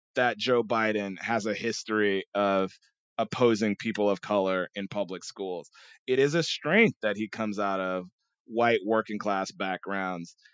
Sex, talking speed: male, 155 wpm